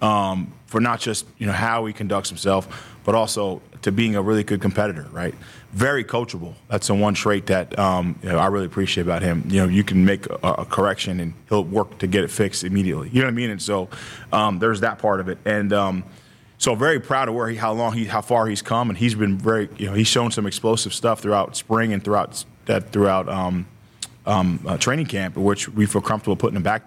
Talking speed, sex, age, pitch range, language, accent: 240 wpm, male, 20-39, 95-110 Hz, English, American